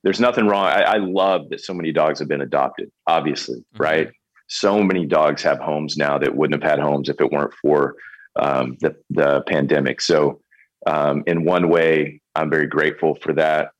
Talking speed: 190 wpm